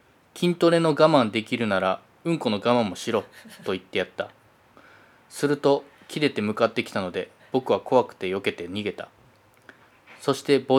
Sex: male